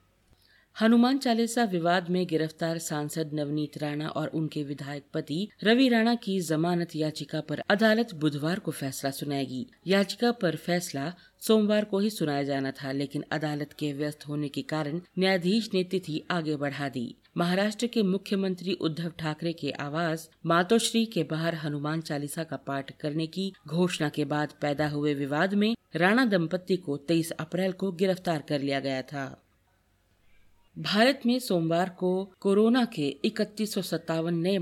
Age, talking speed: 50-69, 155 wpm